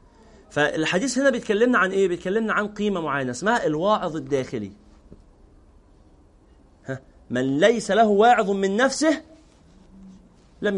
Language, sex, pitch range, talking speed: Arabic, male, 180-260 Hz, 110 wpm